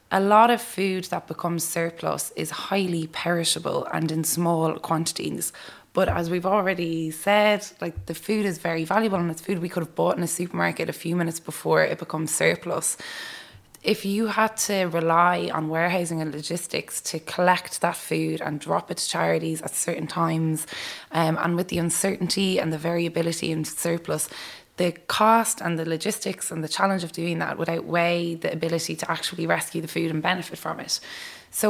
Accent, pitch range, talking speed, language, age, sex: Irish, 165-190 Hz, 185 wpm, English, 20-39, female